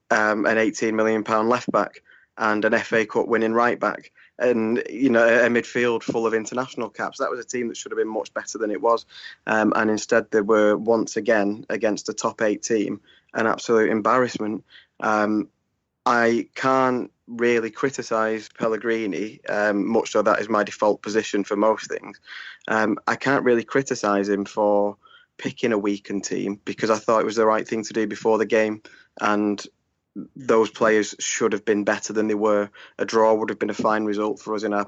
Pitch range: 105-115 Hz